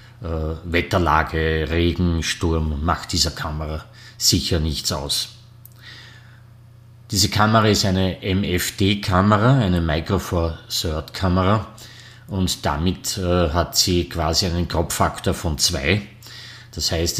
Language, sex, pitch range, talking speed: German, male, 85-115 Hz, 110 wpm